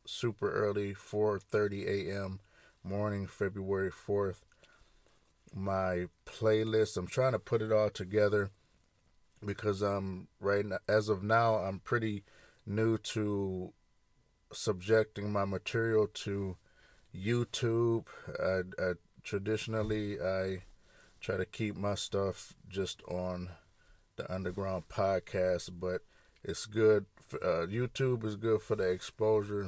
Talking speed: 115 wpm